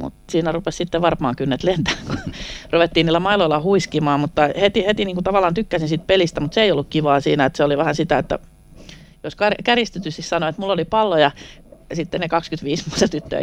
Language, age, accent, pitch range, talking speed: Finnish, 40-59, native, 140-175 Hz, 205 wpm